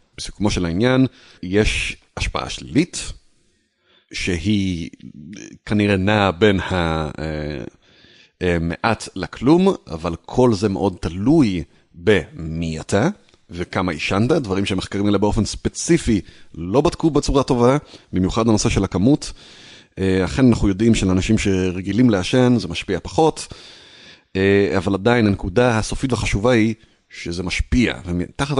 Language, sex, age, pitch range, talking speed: Hebrew, male, 30-49, 95-125 Hz, 110 wpm